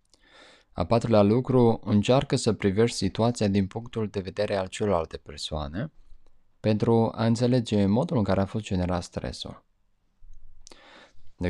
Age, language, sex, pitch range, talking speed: 20-39, Romanian, male, 90-115 Hz, 130 wpm